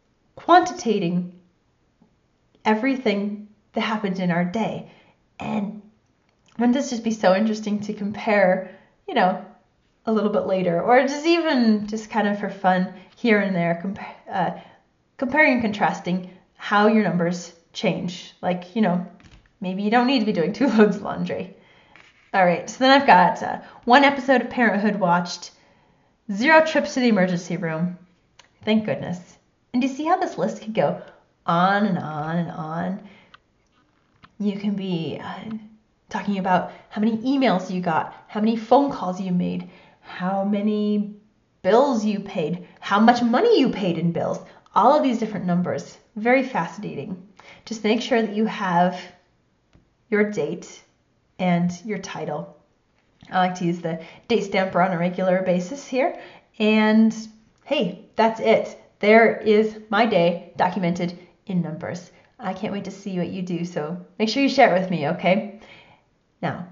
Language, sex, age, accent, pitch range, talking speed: English, female, 30-49, American, 180-220 Hz, 160 wpm